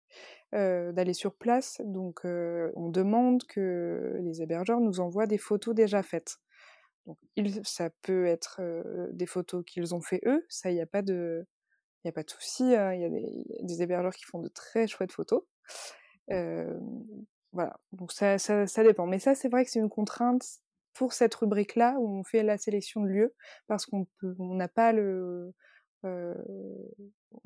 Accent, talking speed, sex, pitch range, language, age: French, 190 wpm, female, 180-220 Hz, French, 20-39